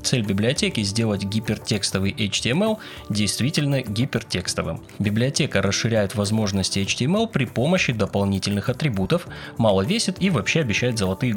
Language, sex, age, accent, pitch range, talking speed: Russian, male, 20-39, native, 100-155 Hz, 110 wpm